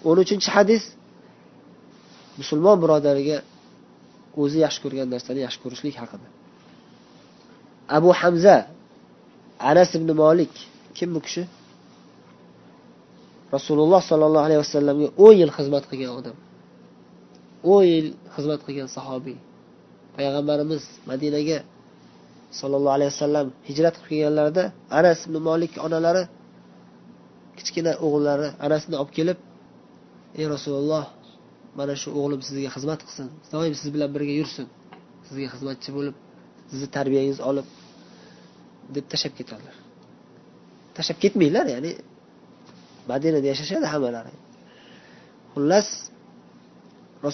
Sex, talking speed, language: male, 85 wpm, Bulgarian